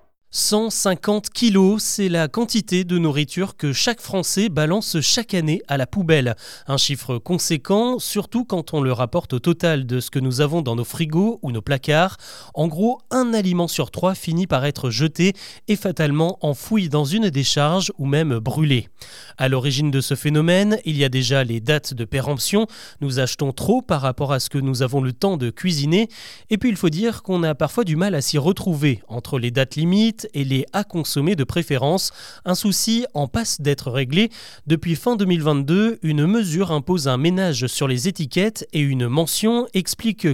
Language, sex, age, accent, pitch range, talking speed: French, male, 30-49, French, 140-195 Hz, 190 wpm